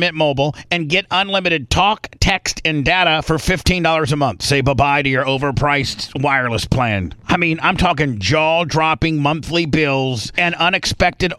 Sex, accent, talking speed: male, American, 155 wpm